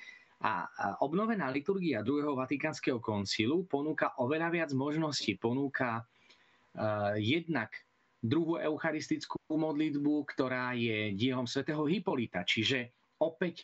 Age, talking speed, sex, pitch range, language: 30-49, 100 wpm, male, 120-150 Hz, Slovak